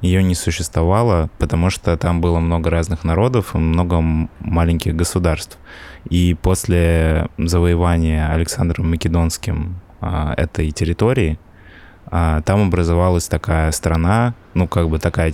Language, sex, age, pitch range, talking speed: Russian, male, 20-39, 80-95 Hz, 115 wpm